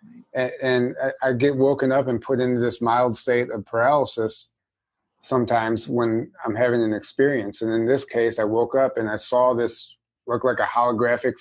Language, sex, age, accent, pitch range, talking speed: English, male, 30-49, American, 115-135 Hz, 180 wpm